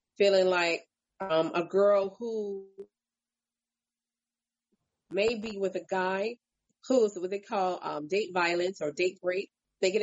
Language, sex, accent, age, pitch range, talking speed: English, female, American, 30-49, 170-205 Hz, 145 wpm